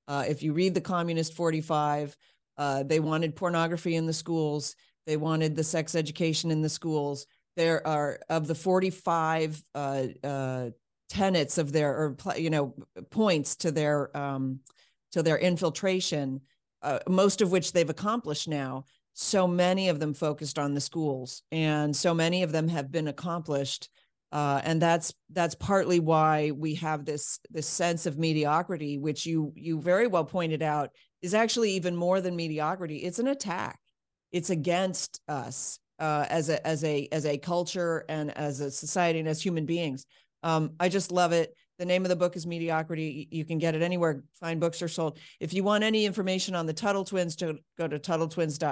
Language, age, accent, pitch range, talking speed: English, 40-59, American, 150-175 Hz, 180 wpm